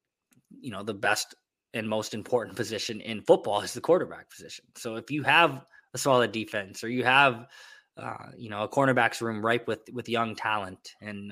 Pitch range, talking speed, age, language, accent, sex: 110-130 Hz, 190 wpm, 20-39, English, American, male